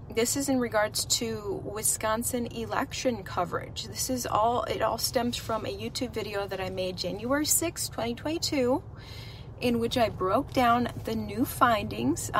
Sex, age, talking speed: female, 30-49, 155 wpm